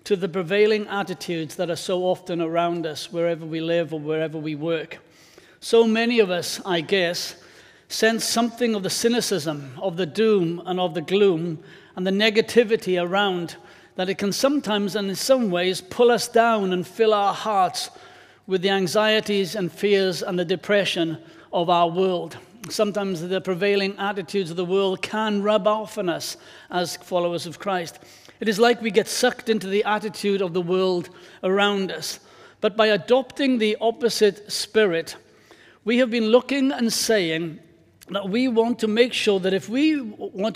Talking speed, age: 175 wpm, 60-79